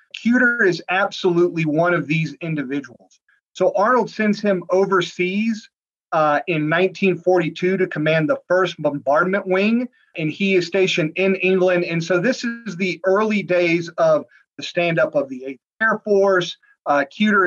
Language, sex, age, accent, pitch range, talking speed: English, male, 30-49, American, 160-195 Hz, 155 wpm